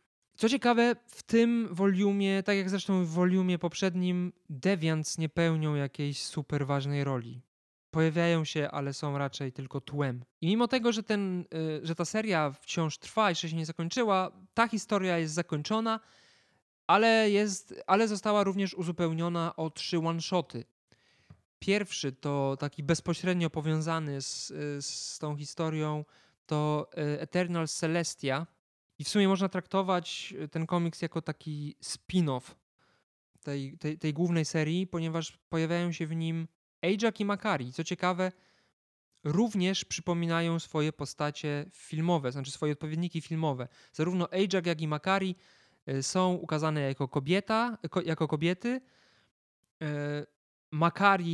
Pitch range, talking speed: 150-190 Hz, 125 wpm